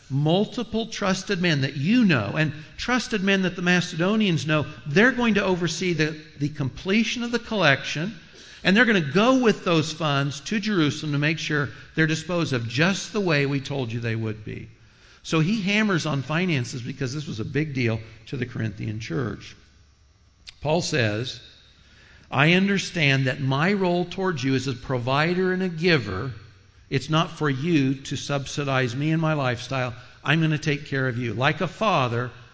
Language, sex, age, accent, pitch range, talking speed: English, male, 60-79, American, 125-165 Hz, 180 wpm